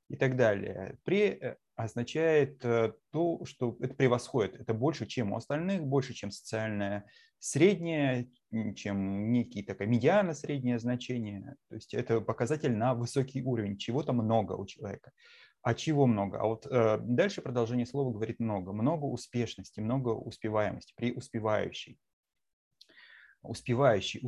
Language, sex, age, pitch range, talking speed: Russian, male, 30-49, 110-135 Hz, 125 wpm